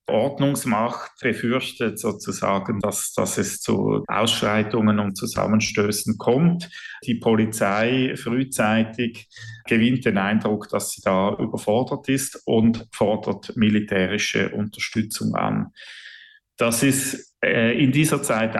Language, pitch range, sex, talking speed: German, 105-130 Hz, male, 105 wpm